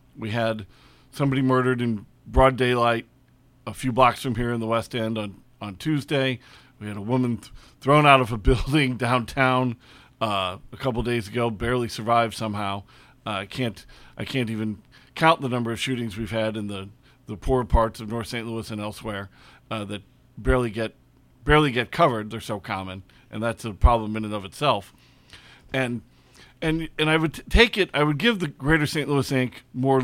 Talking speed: 195 wpm